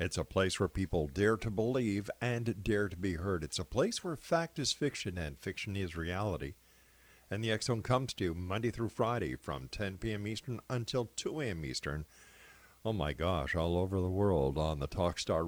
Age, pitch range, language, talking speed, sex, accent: 50-69, 85-115 Hz, English, 200 wpm, male, American